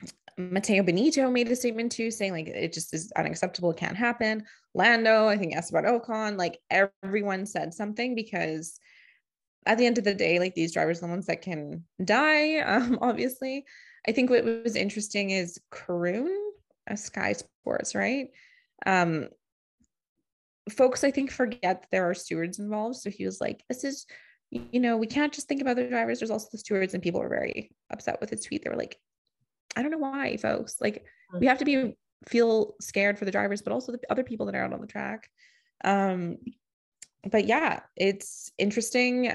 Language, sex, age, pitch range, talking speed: English, female, 20-39, 195-260 Hz, 190 wpm